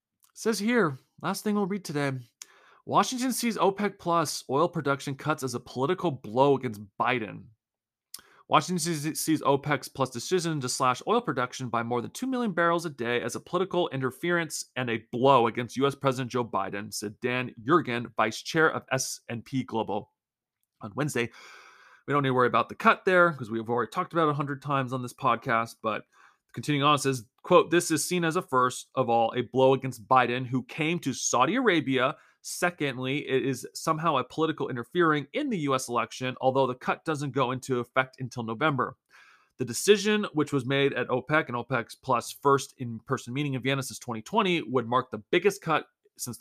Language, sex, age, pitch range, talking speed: English, male, 30-49, 125-160 Hz, 185 wpm